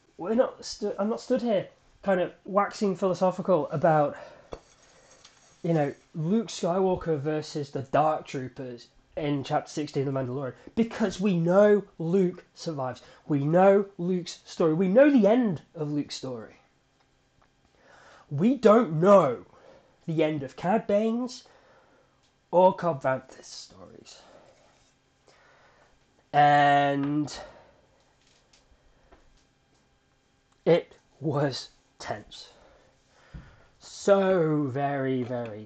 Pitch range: 145-200 Hz